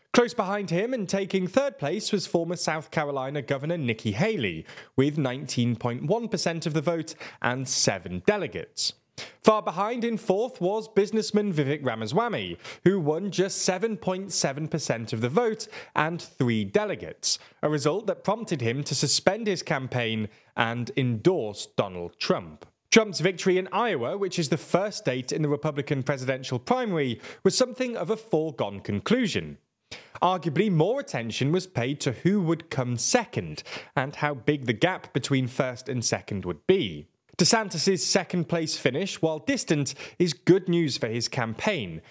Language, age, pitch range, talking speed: English, 20-39, 130-190 Hz, 150 wpm